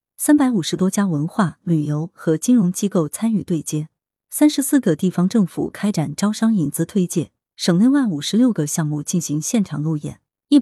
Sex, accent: female, native